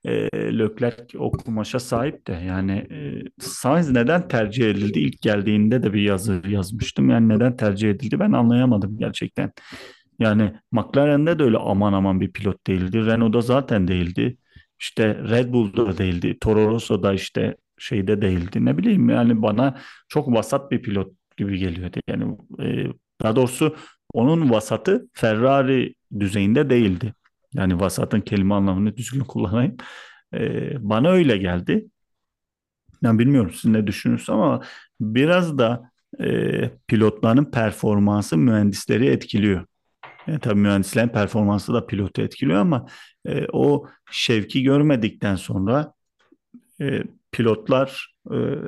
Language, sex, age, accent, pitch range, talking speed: Turkish, male, 40-59, native, 100-125 Hz, 125 wpm